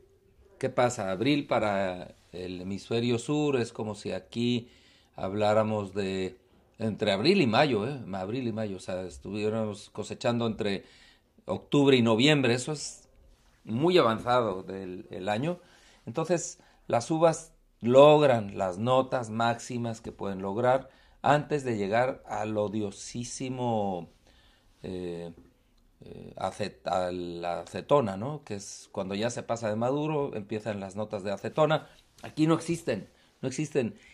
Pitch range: 100-135 Hz